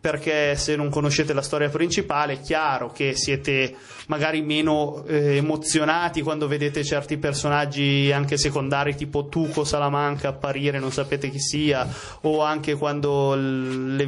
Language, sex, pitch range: Italian, male, 140-160 Hz